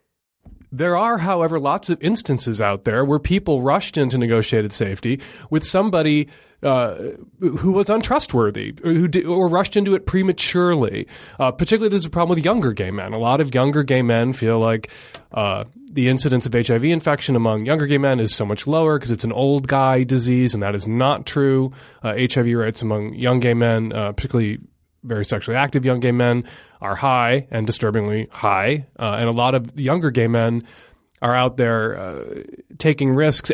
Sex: male